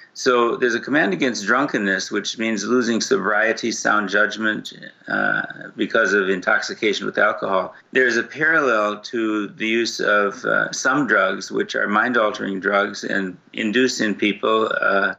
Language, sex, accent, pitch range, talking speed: English, male, American, 100-115 Hz, 150 wpm